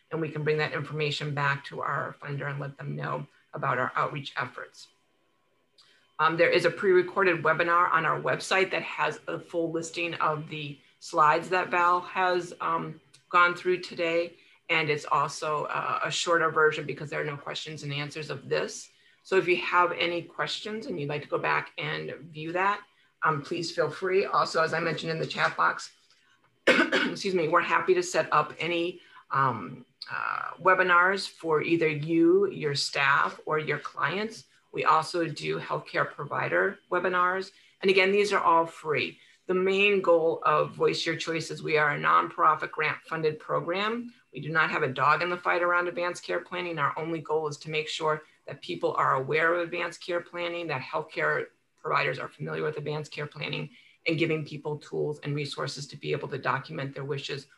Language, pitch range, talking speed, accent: English, 150-180 Hz, 185 wpm, American